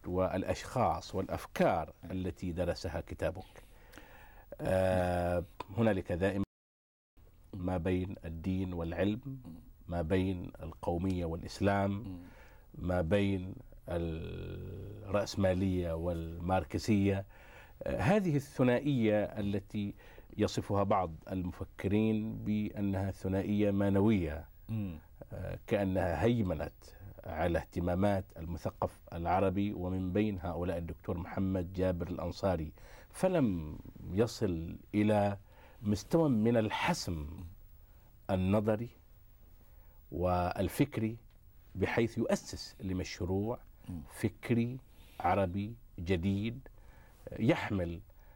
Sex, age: male, 50-69